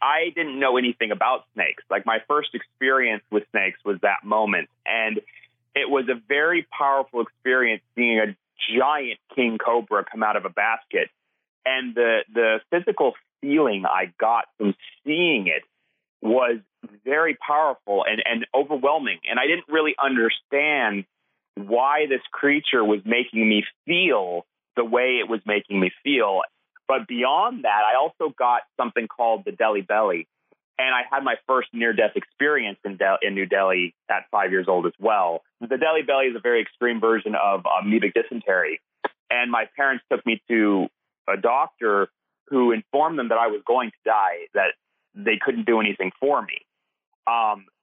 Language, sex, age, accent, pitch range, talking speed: English, male, 30-49, American, 110-135 Hz, 170 wpm